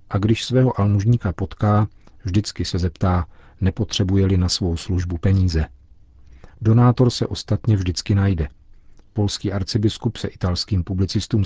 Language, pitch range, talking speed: Czech, 90-110 Hz, 120 wpm